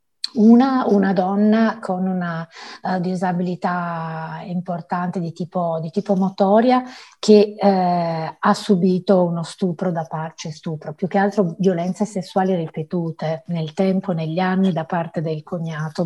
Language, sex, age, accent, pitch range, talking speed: Italian, female, 30-49, native, 165-195 Hz, 135 wpm